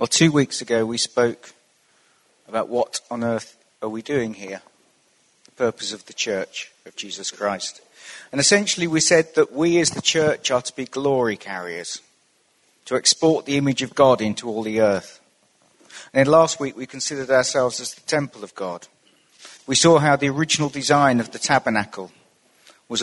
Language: English